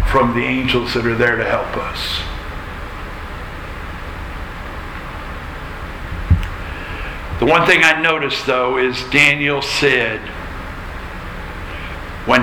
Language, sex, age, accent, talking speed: English, male, 60-79, American, 90 wpm